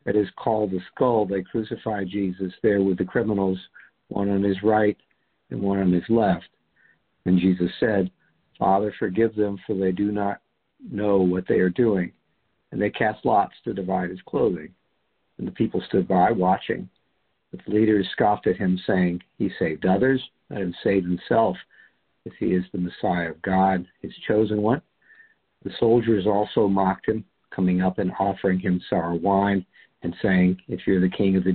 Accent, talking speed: American, 175 wpm